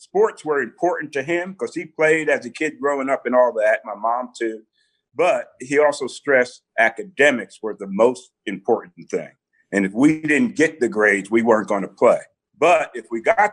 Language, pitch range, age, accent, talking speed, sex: English, 120-170 Hz, 50-69, American, 200 wpm, male